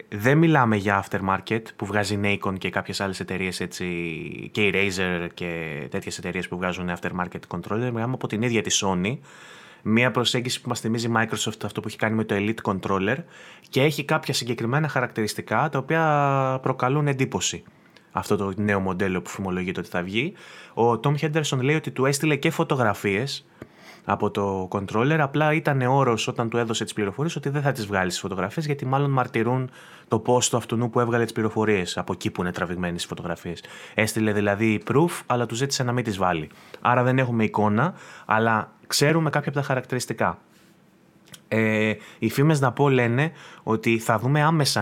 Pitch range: 100-130 Hz